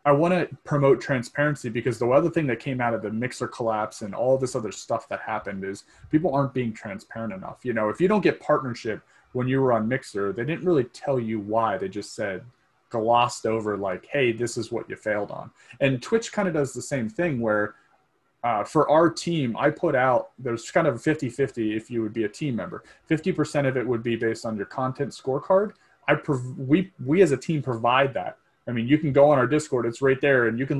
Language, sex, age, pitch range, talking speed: English, male, 30-49, 110-145 Hz, 235 wpm